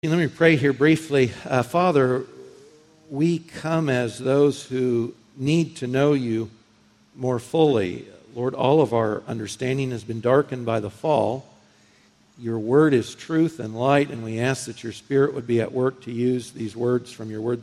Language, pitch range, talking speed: English, 115-160 Hz, 175 wpm